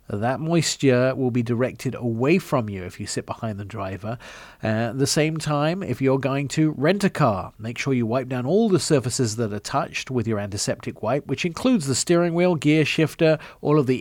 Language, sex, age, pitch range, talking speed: English, male, 40-59, 115-150 Hz, 220 wpm